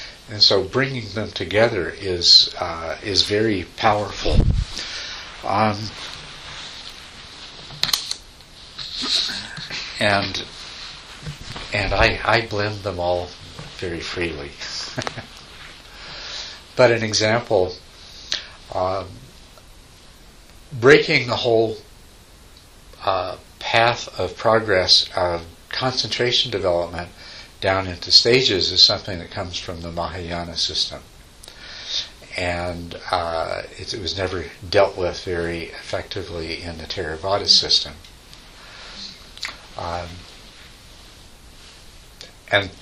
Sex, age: male, 60-79